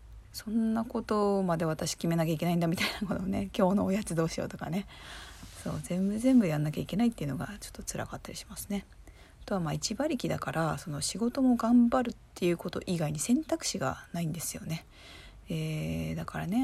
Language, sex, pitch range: Japanese, female, 165-210 Hz